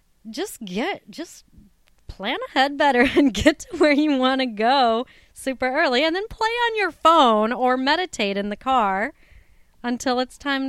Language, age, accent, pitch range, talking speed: English, 30-49, American, 185-255 Hz, 170 wpm